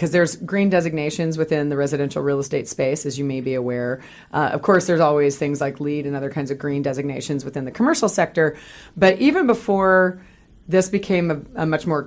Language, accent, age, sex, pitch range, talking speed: English, American, 30-49, female, 150-190 Hz, 210 wpm